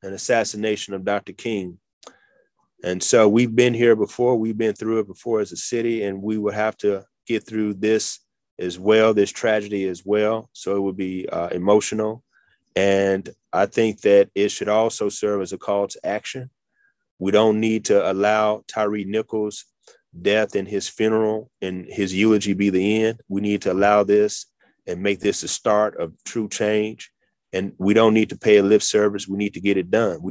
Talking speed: 195 wpm